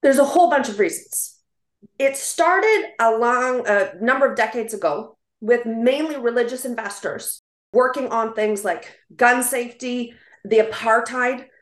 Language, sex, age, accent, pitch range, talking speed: English, female, 30-49, American, 195-245 Hz, 140 wpm